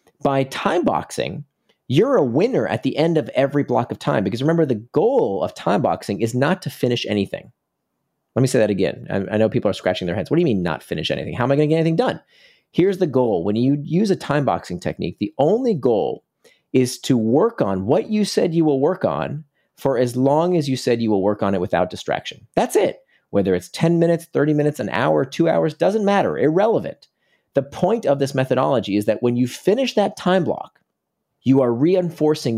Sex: male